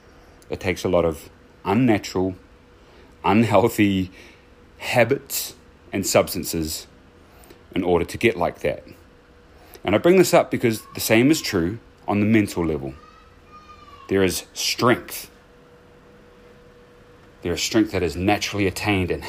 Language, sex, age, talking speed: English, male, 30-49, 130 wpm